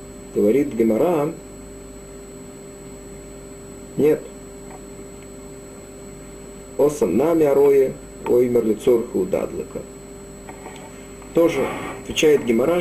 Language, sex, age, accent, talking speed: Russian, male, 50-69, native, 55 wpm